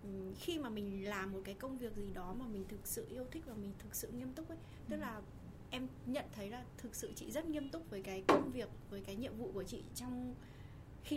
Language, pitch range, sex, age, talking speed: Vietnamese, 185-250 Hz, female, 20-39, 255 wpm